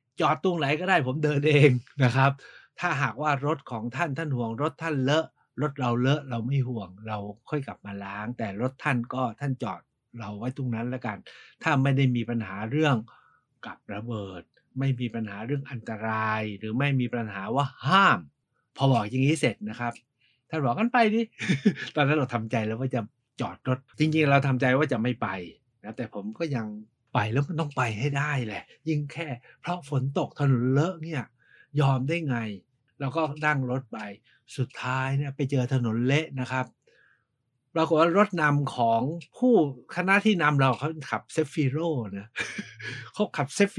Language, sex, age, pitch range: Thai, male, 60-79, 120-150 Hz